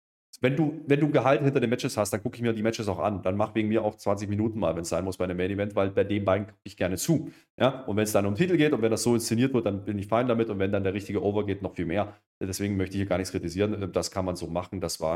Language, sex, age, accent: German, male, 30-49, German